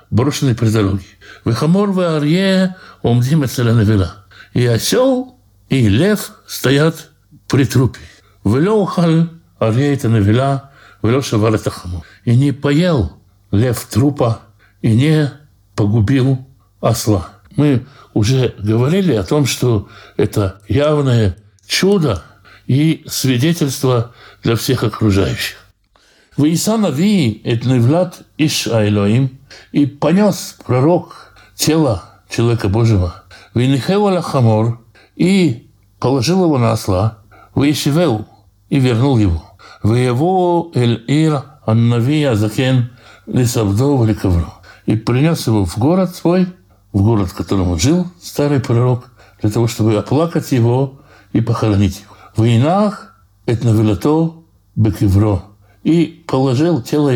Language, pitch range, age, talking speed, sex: Russian, 105-150 Hz, 60-79, 80 wpm, male